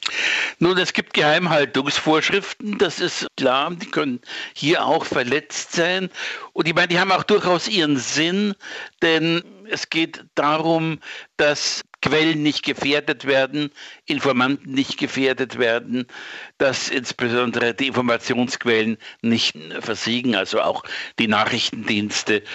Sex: male